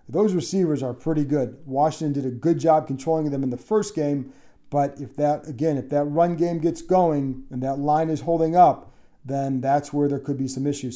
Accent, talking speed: American, 220 wpm